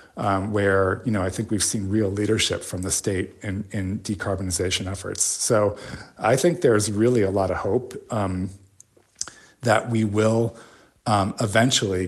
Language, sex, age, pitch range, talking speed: English, male, 40-59, 95-115 Hz, 160 wpm